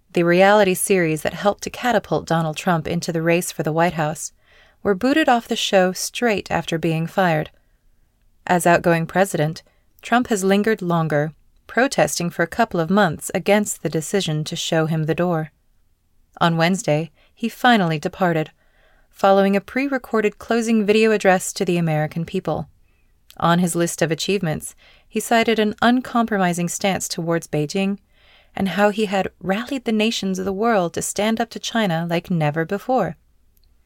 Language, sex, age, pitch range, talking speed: English, female, 30-49, 160-205 Hz, 160 wpm